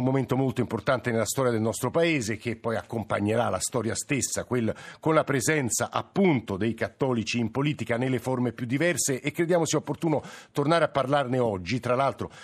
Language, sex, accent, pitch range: Italian, male, native, 110-135 Hz